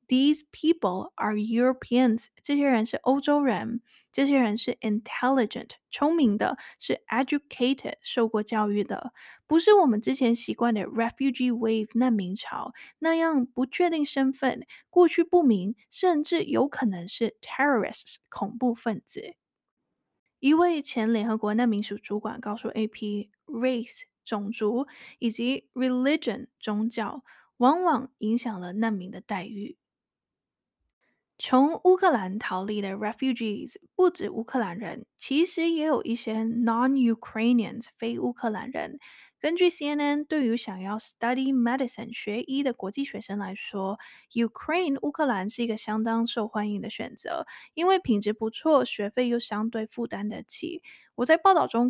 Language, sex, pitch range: Chinese, female, 220-275 Hz